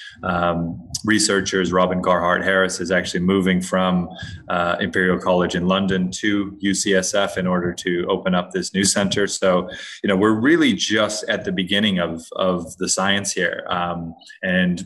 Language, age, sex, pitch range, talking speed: English, 30-49, male, 90-100 Hz, 160 wpm